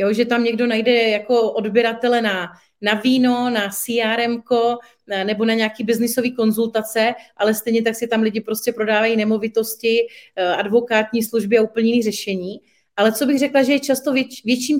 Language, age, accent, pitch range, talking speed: Czech, 30-49, native, 220-255 Hz, 155 wpm